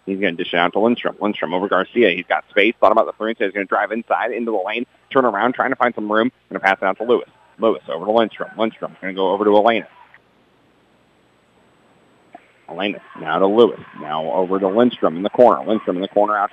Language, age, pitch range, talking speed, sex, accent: English, 40-59, 95-125 Hz, 245 wpm, male, American